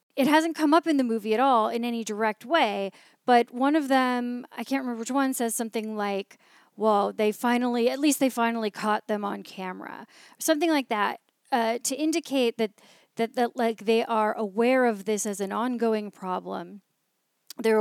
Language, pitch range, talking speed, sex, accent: English, 215-275 Hz, 190 wpm, female, American